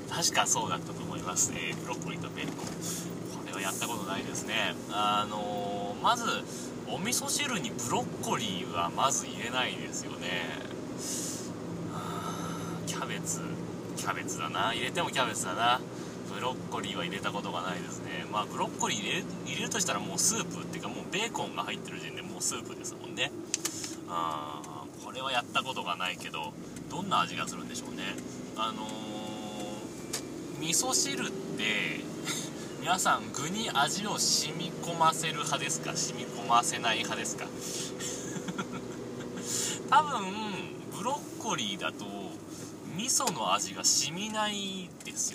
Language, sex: Japanese, male